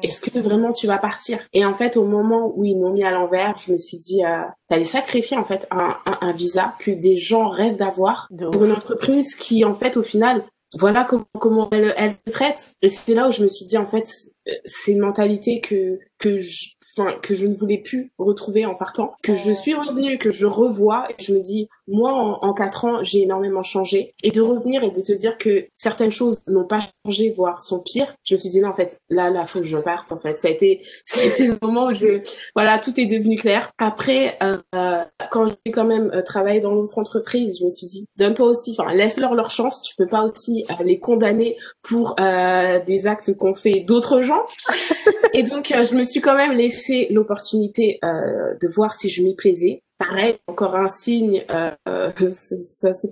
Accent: French